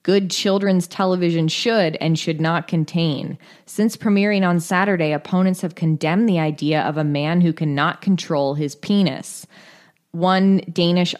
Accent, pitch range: American, 165-205 Hz